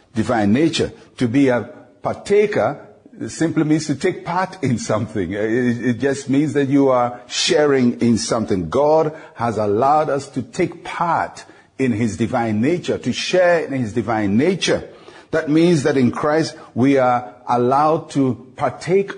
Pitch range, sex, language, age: 115-140 Hz, male, English, 50-69